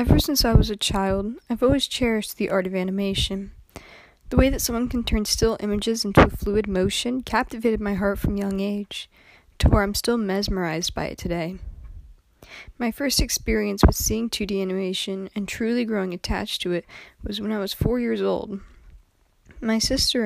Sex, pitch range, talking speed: female, 185-230 Hz, 180 wpm